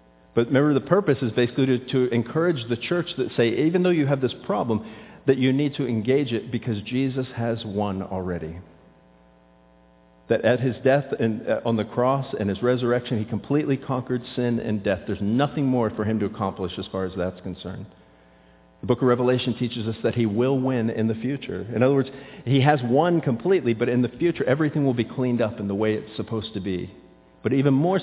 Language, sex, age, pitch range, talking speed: English, male, 50-69, 100-125 Hz, 210 wpm